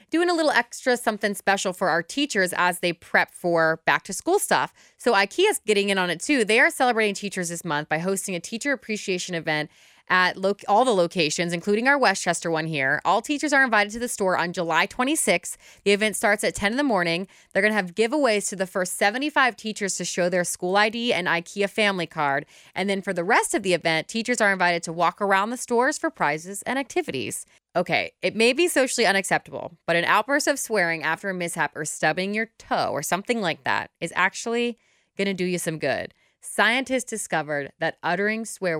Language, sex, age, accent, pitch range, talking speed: English, female, 20-39, American, 170-225 Hz, 215 wpm